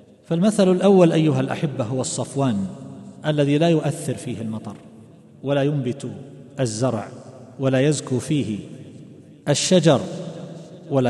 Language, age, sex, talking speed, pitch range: Arabic, 50-69, male, 105 wpm, 130-165 Hz